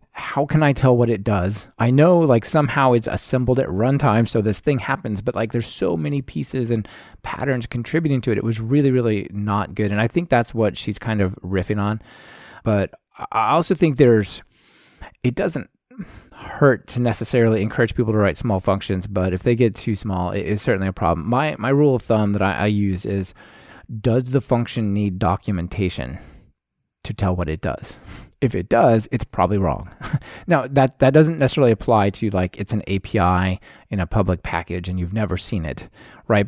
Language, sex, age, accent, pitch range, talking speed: English, male, 20-39, American, 95-125 Hz, 195 wpm